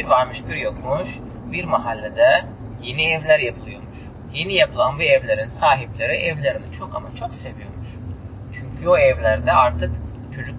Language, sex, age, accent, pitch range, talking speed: Turkish, male, 30-49, native, 90-135 Hz, 130 wpm